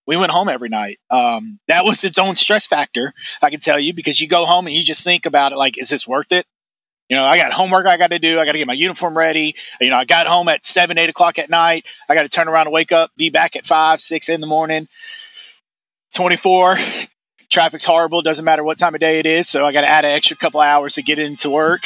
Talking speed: 270 wpm